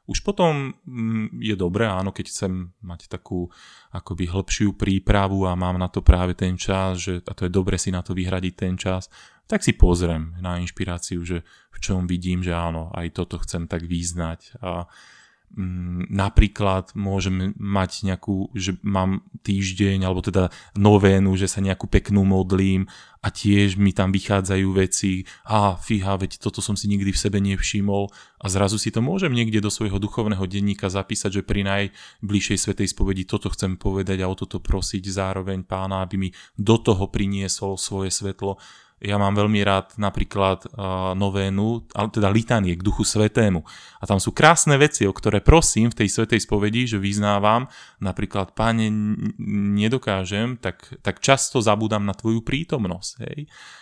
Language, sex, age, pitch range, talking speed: Slovak, male, 20-39, 95-105 Hz, 165 wpm